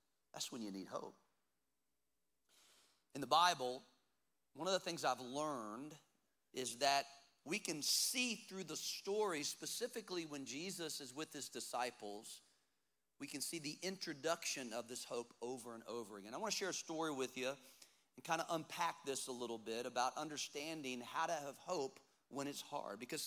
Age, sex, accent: 40-59, male, American